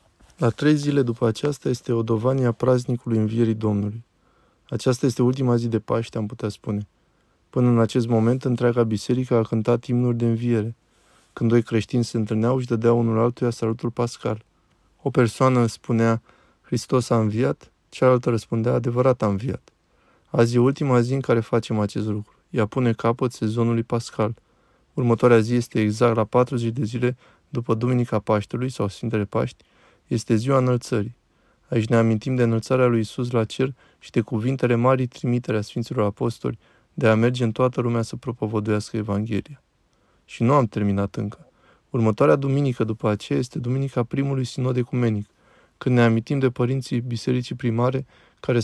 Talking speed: 160 wpm